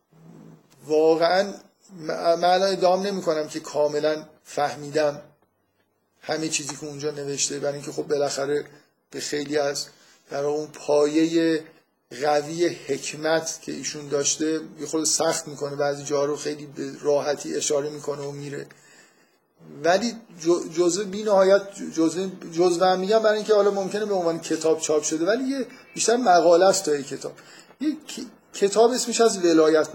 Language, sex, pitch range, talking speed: Persian, male, 150-180 Hz, 140 wpm